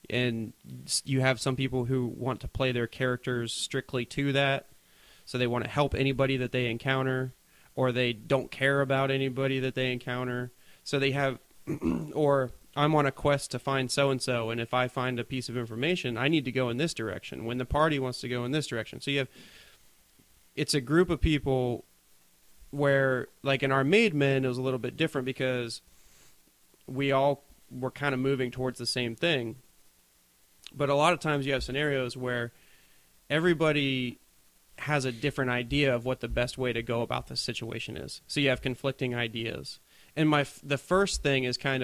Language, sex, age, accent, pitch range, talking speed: English, male, 30-49, American, 120-140 Hz, 195 wpm